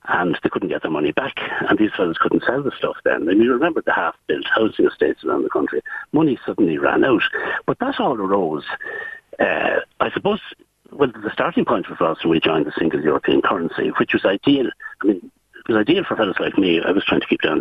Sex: male